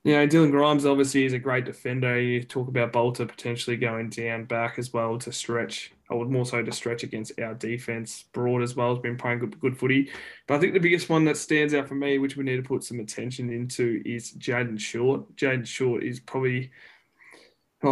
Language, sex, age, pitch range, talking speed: English, male, 10-29, 120-135 Hz, 220 wpm